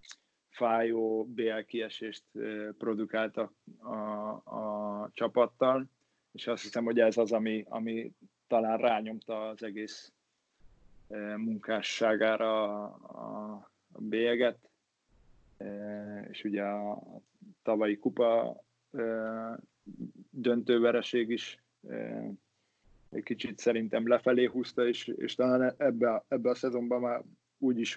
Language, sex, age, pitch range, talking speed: Hungarian, male, 20-39, 105-120 Hz, 90 wpm